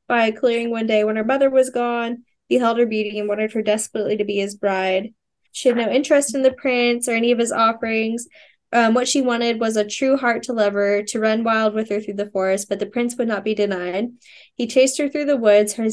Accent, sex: American, female